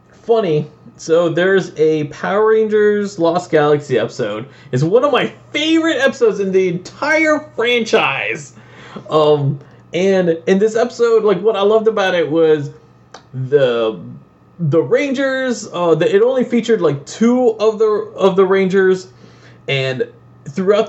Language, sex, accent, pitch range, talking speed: English, male, American, 155-220 Hz, 140 wpm